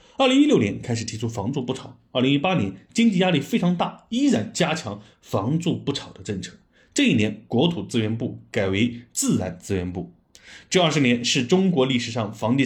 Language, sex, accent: Chinese, male, native